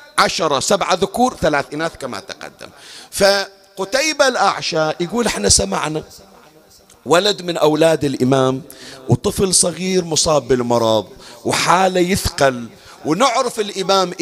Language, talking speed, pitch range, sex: Arabic, 100 wpm, 130-200 Hz, male